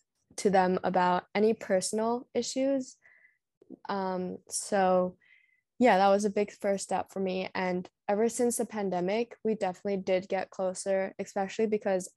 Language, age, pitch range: English, 10-29, 185-210 Hz